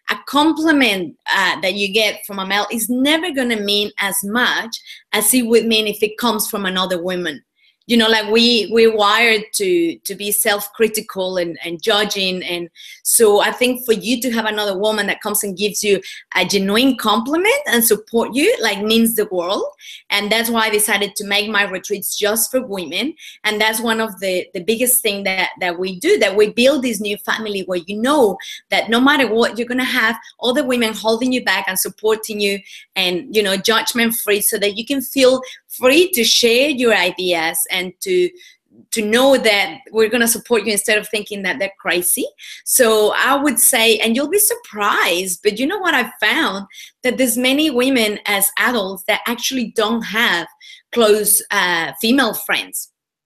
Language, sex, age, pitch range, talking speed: English, female, 20-39, 205-250 Hz, 195 wpm